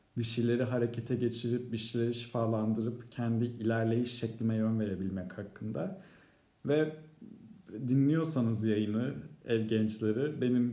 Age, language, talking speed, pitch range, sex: 40-59, Turkish, 105 wpm, 115-150 Hz, male